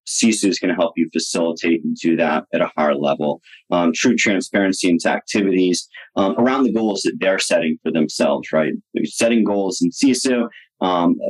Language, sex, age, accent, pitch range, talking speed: English, male, 30-49, American, 95-120 Hz, 185 wpm